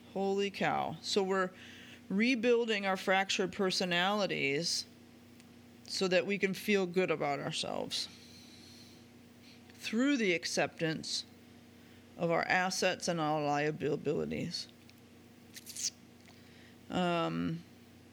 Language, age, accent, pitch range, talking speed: English, 40-59, American, 170-210 Hz, 85 wpm